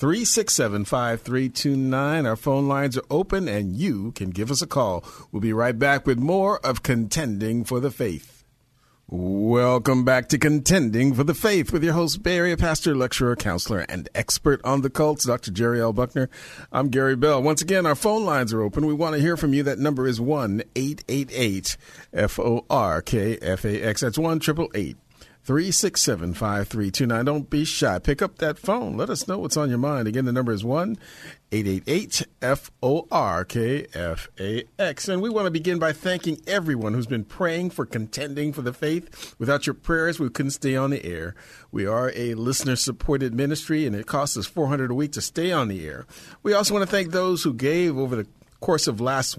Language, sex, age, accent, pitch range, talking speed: English, male, 50-69, American, 120-155 Hz, 190 wpm